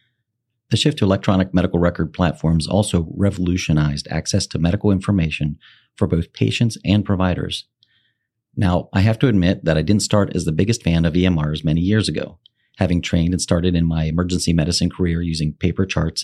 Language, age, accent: English, 40-59, American